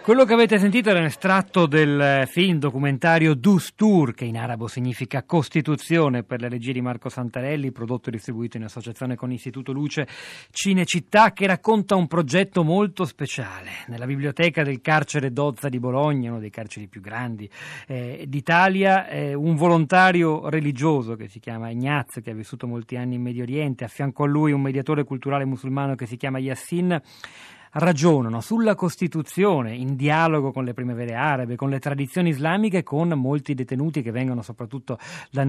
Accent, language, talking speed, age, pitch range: native, Italian, 170 wpm, 40-59, 125-165 Hz